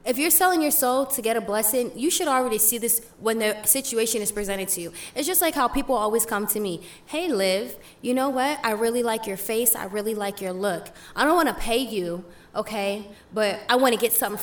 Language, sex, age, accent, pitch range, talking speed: English, female, 20-39, American, 205-255 Hz, 240 wpm